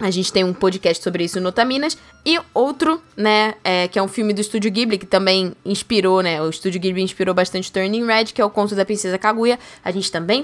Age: 10-29